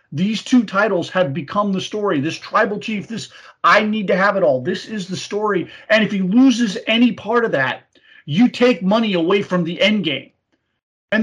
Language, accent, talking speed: English, American, 205 wpm